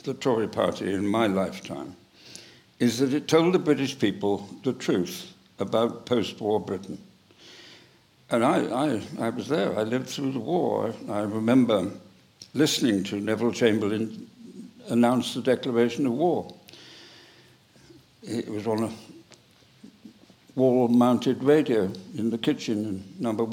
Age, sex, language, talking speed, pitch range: 60-79, male, English, 135 wpm, 110-140 Hz